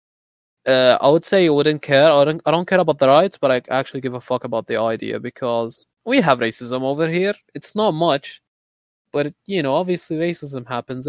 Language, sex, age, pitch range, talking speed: English, male, 20-39, 115-140 Hz, 215 wpm